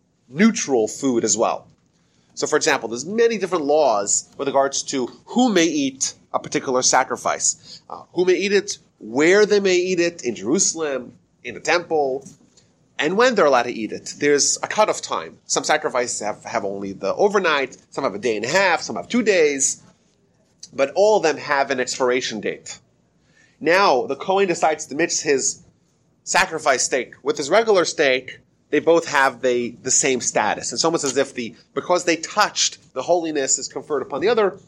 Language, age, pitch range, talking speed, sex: English, 30-49, 130-165 Hz, 185 wpm, male